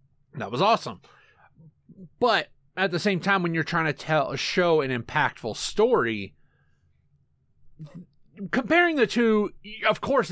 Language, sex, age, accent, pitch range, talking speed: English, male, 30-49, American, 135-195 Hz, 135 wpm